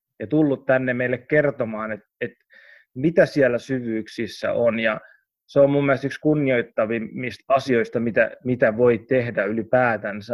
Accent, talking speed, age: native, 140 wpm, 30-49